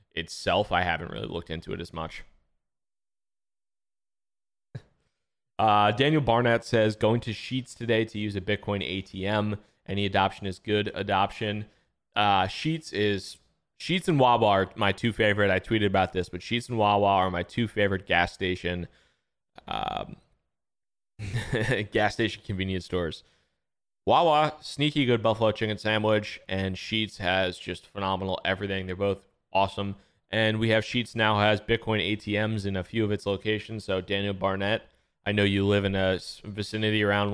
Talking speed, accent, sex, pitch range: 155 wpm, American, male, 95-110 Hz